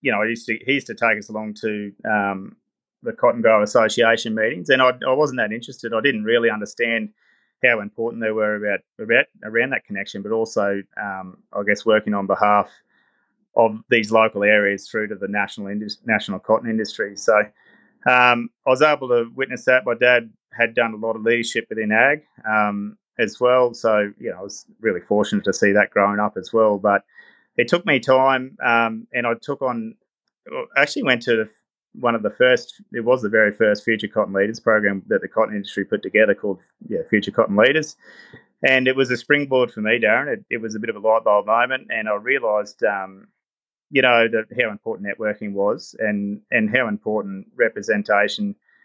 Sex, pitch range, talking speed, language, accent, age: male, 105-120 Hz, 200 wpm, English, Australian, 20-39